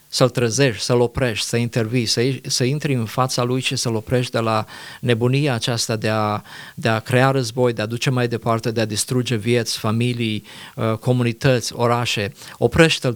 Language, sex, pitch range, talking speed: Romanian, male, 120-140 Hz, 170 wpm